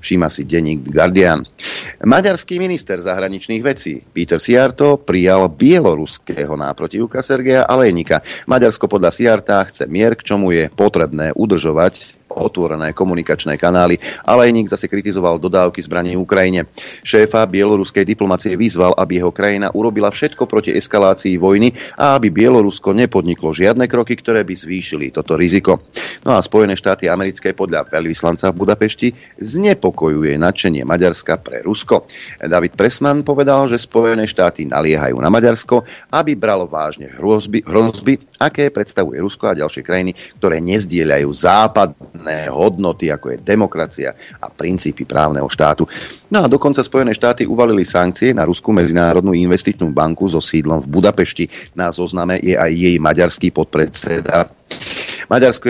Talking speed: 140 wpm